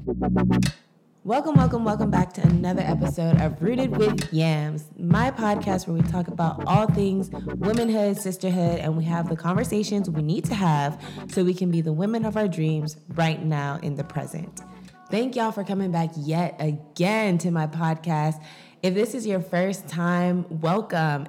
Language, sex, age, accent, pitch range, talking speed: English, female, 20-39, American, 160-195 Hz, 170 wpm